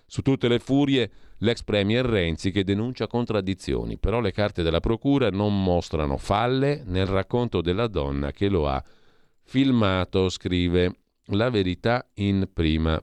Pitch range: 85-115 Hz